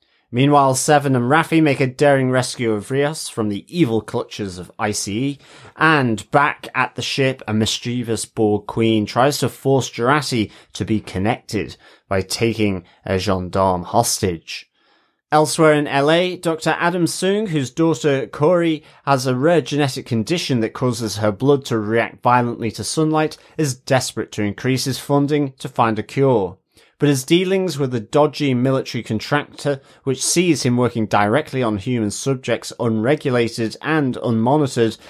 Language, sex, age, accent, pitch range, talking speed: English, male, 30-49, British, 110-145 Hz, 150 wpm